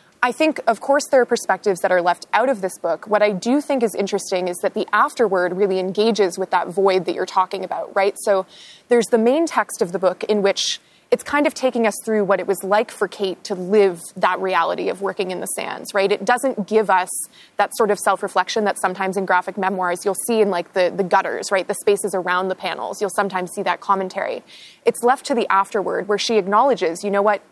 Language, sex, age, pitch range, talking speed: English, female, 20-39, 185-215 Hz, 235 wpm